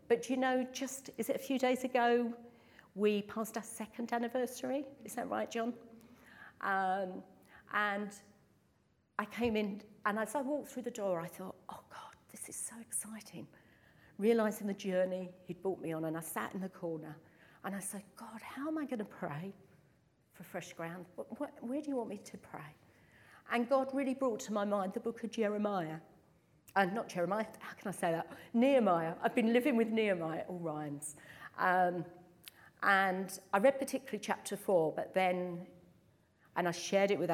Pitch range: 175-230 Hz